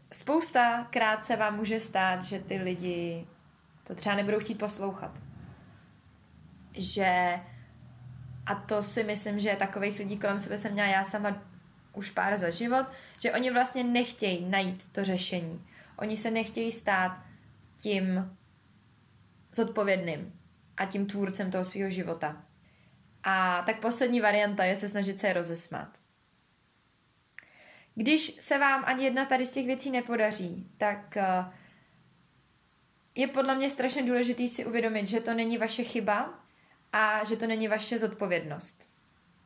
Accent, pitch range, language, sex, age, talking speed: native, 185-230 Hz, Czech, female, 20-39, 135 wpm